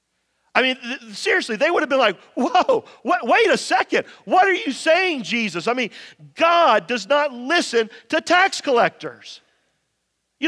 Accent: American